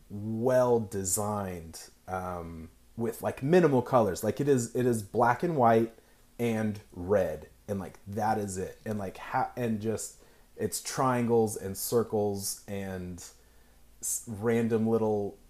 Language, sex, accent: English, male, American